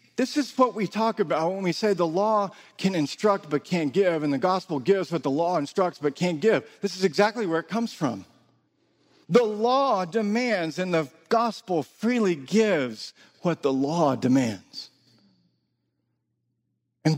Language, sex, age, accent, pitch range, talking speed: English, male, 50-69, American, 170-235 Hz, 165 wpm